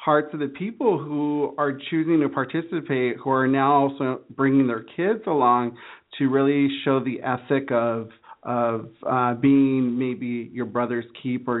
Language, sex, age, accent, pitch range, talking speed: English, male, 40-59, American, 120-145 Hz, 155 wpm